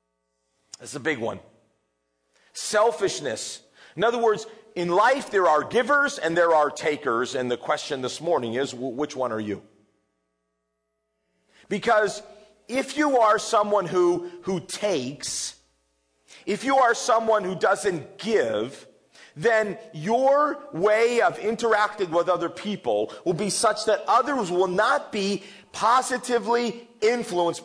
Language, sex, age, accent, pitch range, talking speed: English, male, 40-59, American, 175-255 Hz, 130 wpm